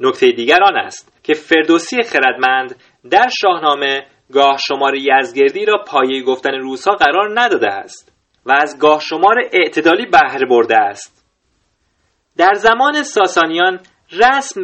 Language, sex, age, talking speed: Persian, male, 30-49, 125 wpm